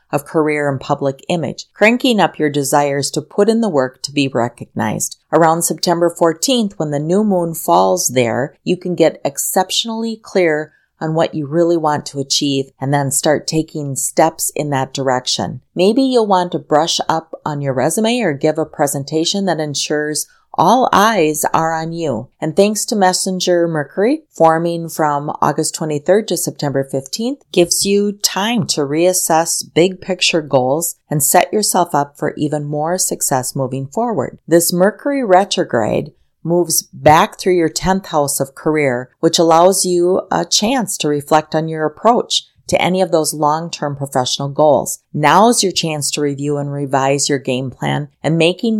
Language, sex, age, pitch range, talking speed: English, female, 40-59, 145-180 Hz, 170 wpm